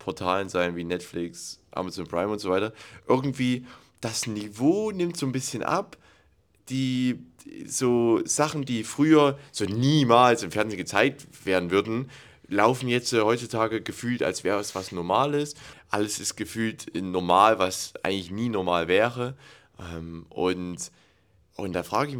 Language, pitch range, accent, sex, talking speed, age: German, 90-120 Hz, German, male, 150 wpm, 30-49